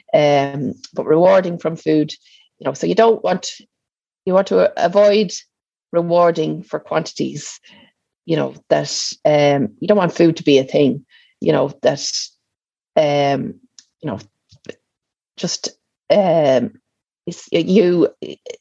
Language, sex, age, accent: English, female, 30-49, Irish